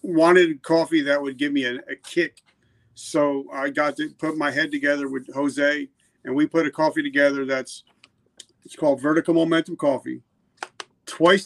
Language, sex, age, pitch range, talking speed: English, male, 50-69, 135-205 Hz, 170 wpm